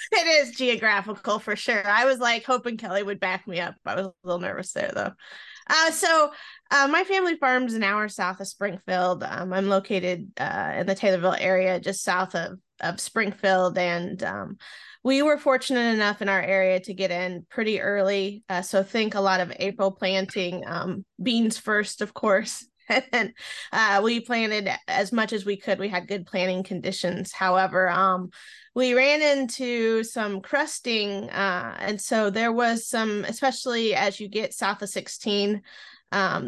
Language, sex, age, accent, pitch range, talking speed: English, female, 20-39, American, 190-230 Hz, 175 wpm